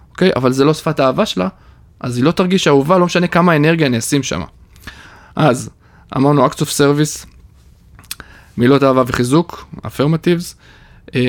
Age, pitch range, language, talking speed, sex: 20-39, 115-160 Hz, Hebrew, 155 wpm, male